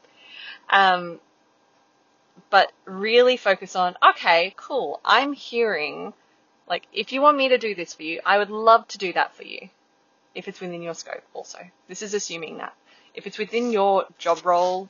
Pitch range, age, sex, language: 175-235 Hz, 20-39, female, English